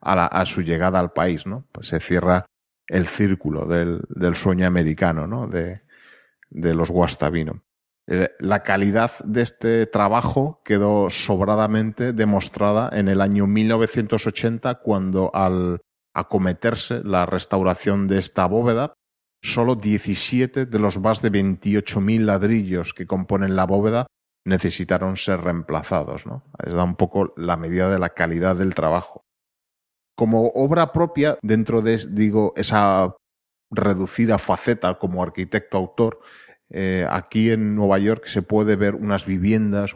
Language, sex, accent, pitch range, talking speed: Spanish, male, Spanish, 90-110 Hz, 135 wpm